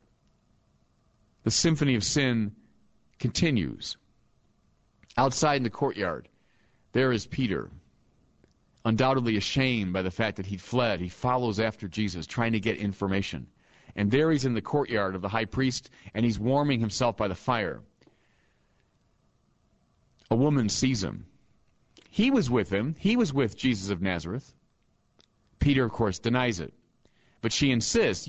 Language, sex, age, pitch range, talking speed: English, male, 40-59, 110-145 Hz, 145 wpm